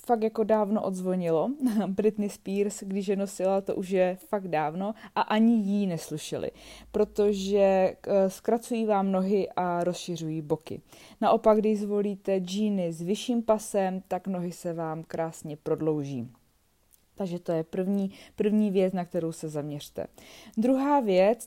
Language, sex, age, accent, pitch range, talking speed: Czech, female, 20-39, native, 180-215 Hz, 140 wpm